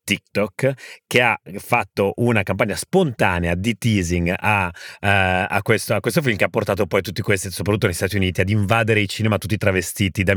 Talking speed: 190 wpm